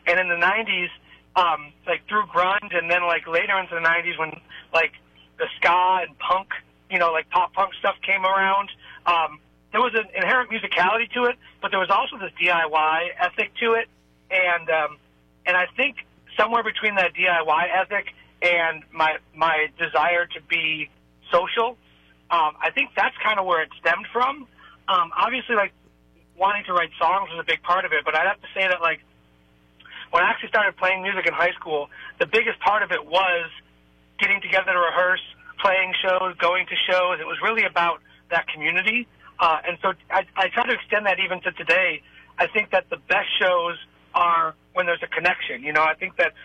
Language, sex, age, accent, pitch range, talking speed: English, male, 40-59, American, 160-190 Hz, 195 wpm